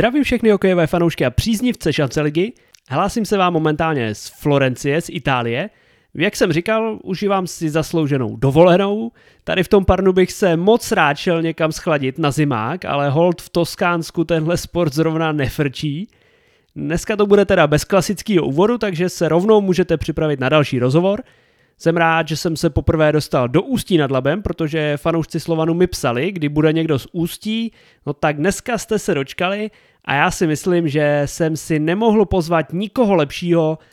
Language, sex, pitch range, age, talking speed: Czech, male, 150-180 Hz, 30-49, 170 wpm